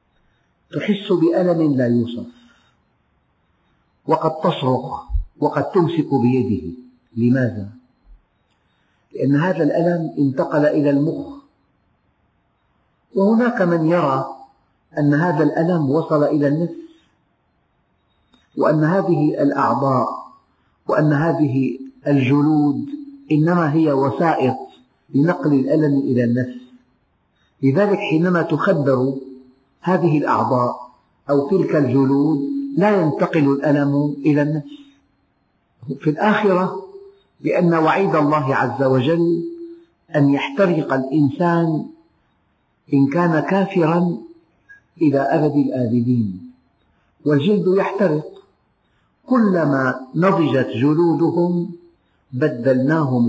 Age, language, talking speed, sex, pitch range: 50-69, Arabic, 80 wpm, male, 130-175 Hz